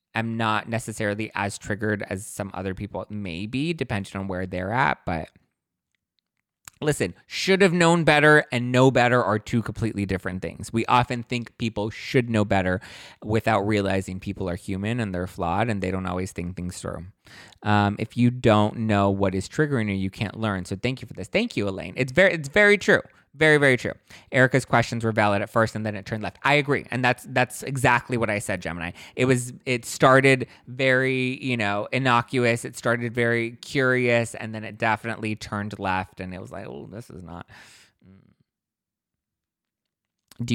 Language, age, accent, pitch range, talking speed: English, 20-39, American, 100-130 Hz, 190 wpm